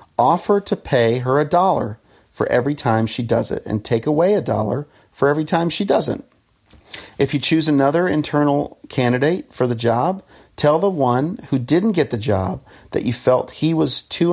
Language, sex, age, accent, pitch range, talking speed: English, male, 40-59, American, 110-150 Hz, 190 wpm